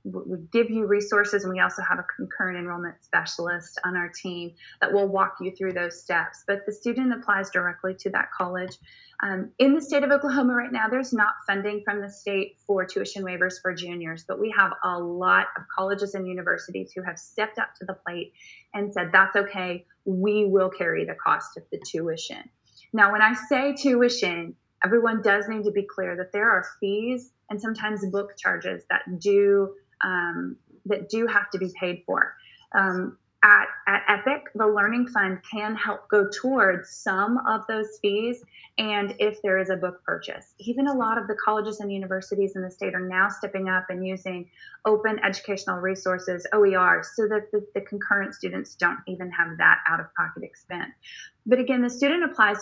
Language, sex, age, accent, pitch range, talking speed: English, female, 20-39, American, 185-215 Hz, 190 wpm